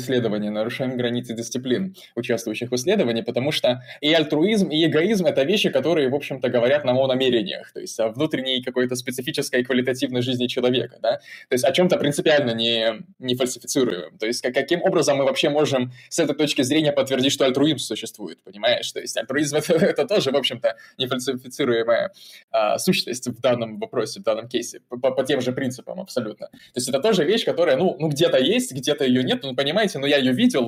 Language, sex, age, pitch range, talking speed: Russian, male, 20-39, 125-155 Hz, 200 wpm